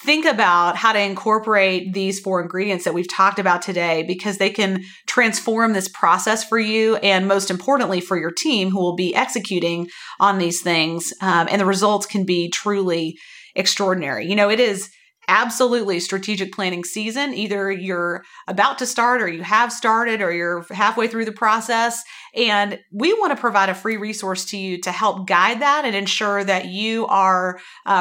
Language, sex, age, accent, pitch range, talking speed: English, female, 40-59, American, 185-230 Hz, 180 wpm